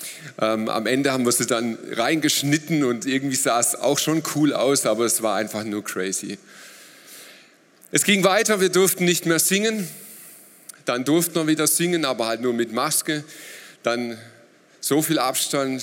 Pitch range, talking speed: 115-160 Hz, 165 wpm